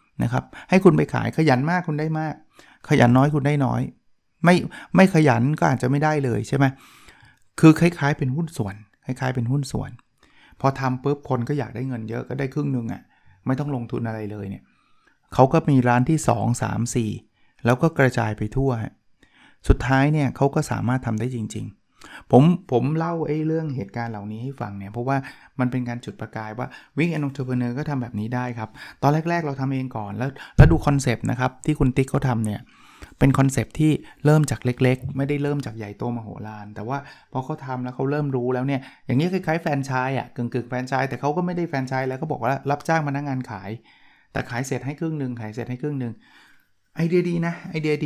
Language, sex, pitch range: Thai, male, 120-145 Hz